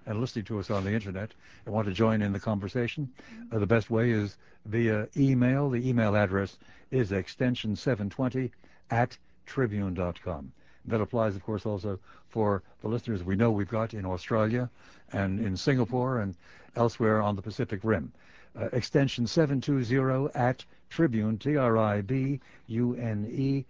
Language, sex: English, male